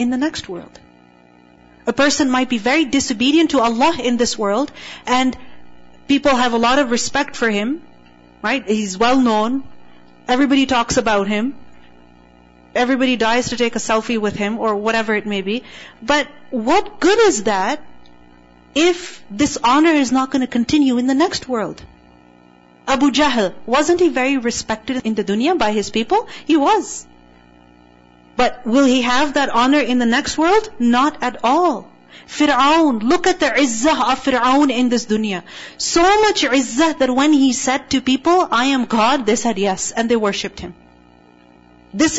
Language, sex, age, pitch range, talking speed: English, female, 40-59, 205-275 Hz, 170 wpm